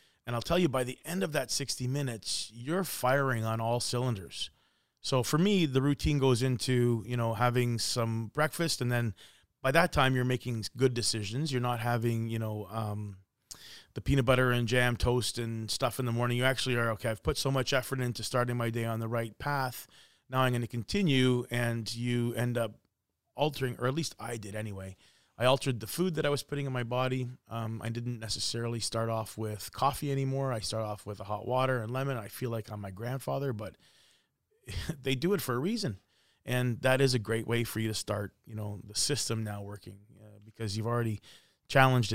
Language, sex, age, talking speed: English, male, 30-49, 215 wpm